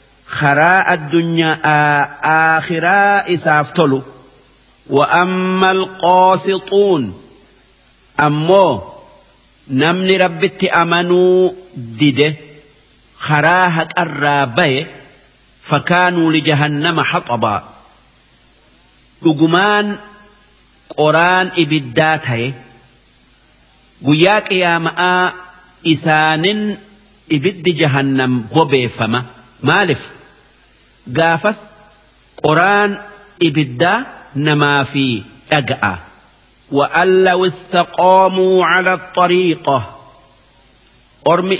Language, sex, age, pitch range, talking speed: Arabic, male, 50-69, 145-180 Hz, 55 wpm